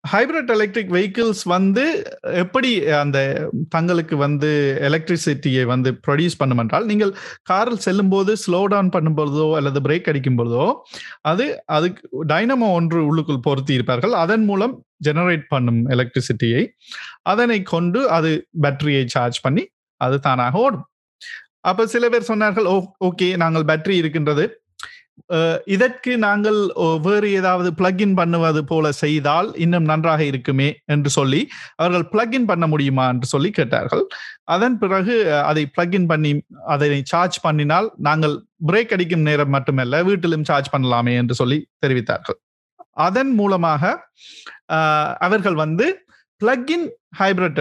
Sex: male